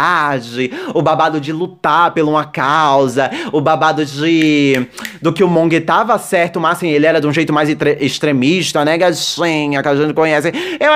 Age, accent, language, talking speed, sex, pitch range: 20-39, Brazilian, Portuguese, 180 wpm, male, 165-230 Hz